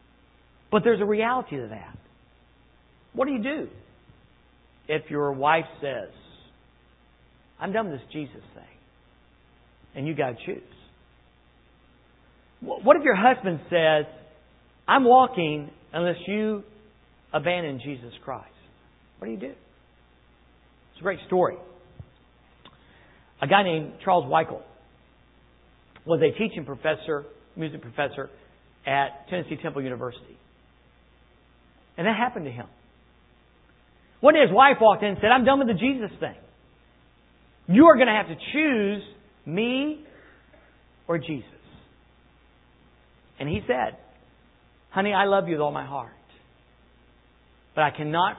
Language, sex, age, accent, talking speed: English, male, 50-69, American, 130 wpm